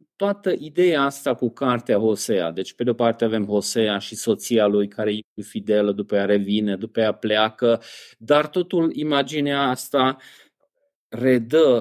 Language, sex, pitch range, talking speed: Romanian, male, 125-180 Hz, 150 wpm